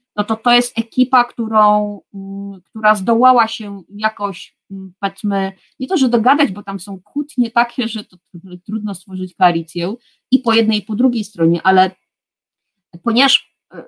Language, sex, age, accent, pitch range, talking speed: Polish, female, 30-49, native, 195-255 Hz, 145 wpm